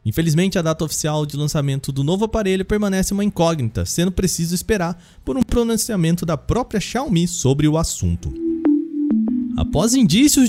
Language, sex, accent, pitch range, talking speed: Portuguese, male, Brazilian, 140-200 Hz, 150 wpm